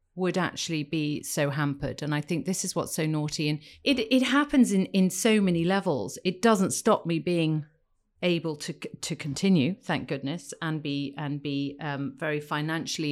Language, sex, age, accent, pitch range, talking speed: English, female, 40-59, British, 145-185 Hz, 185 wpm